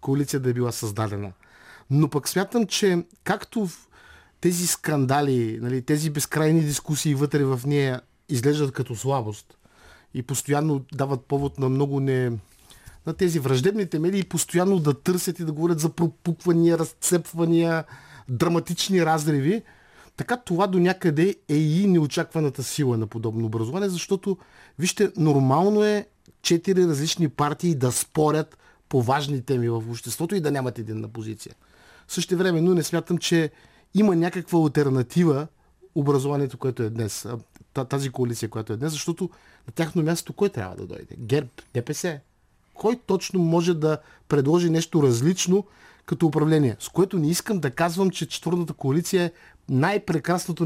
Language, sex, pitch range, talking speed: Bulgarian, male, 135-175 Hz, 150 wpm